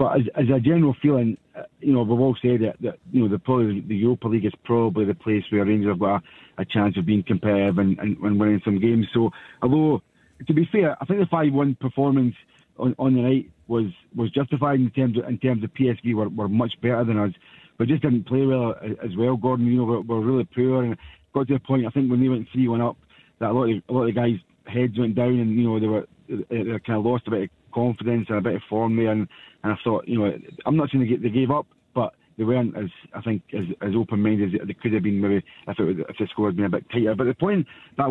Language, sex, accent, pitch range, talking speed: English, male, British, 110-130 Hz, 270 wpm